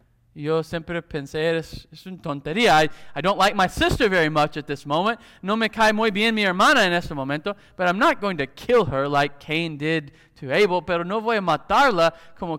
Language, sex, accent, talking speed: English, male, American, 220 wpm